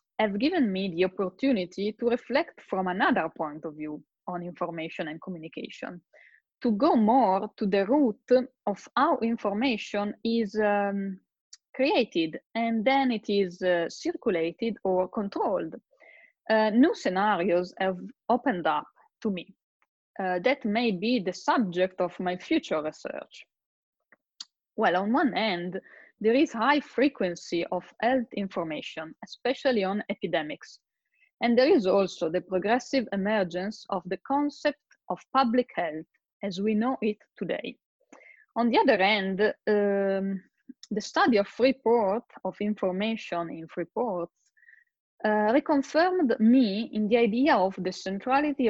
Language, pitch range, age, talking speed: English, 185-250 Hz, 20-39, 135 wpm